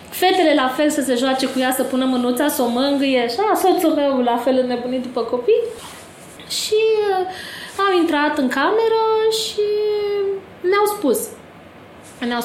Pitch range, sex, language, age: 230-310 Hz, female, Romanian, 20-39